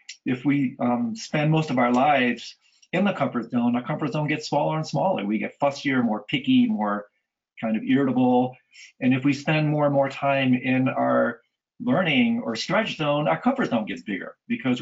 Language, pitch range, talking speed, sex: English, 115-155 Hz, 195 wpm, male